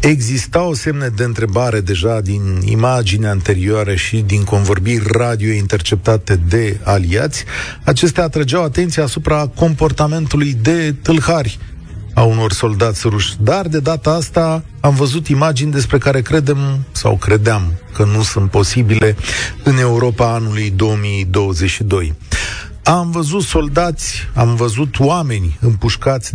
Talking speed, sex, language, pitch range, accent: 120 wpm, male, Romanian, 110-145 Hz, native